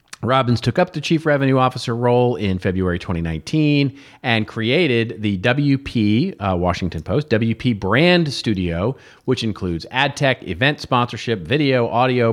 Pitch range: 95-120 Hz